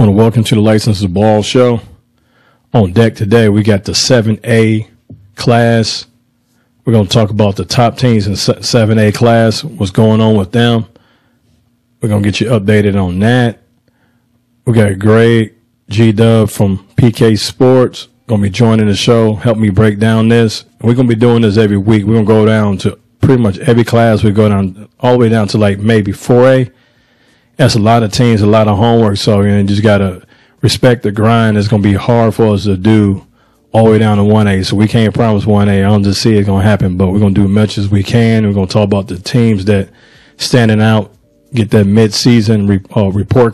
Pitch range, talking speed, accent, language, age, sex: 105-115 Hz, 215 wpm, American, English, 40-59, male